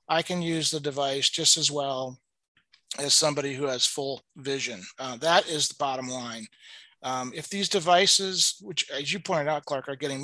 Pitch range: 135-165 Hz